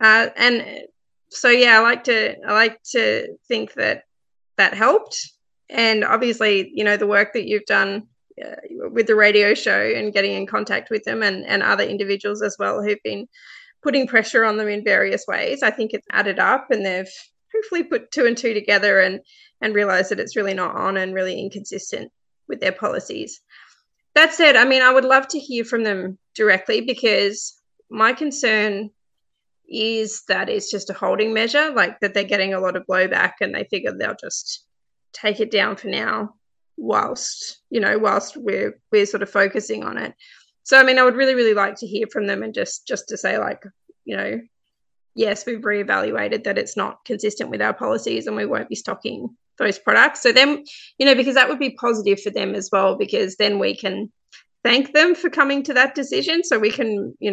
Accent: Australian